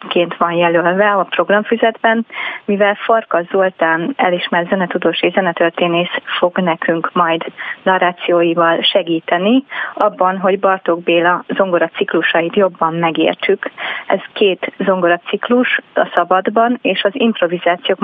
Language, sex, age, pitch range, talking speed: Hungarian, female, 30-49, 180-220 Hz, 110 wpm